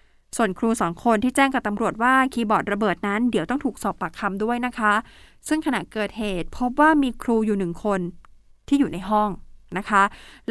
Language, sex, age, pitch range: Thai, female, 20-39, 205-260 Hz